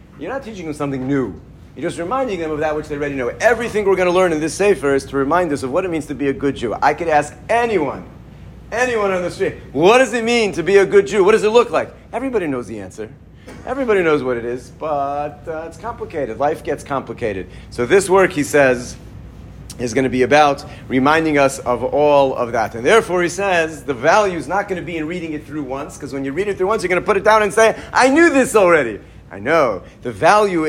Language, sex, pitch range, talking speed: English, male, 125-180 Hz, 255 wpm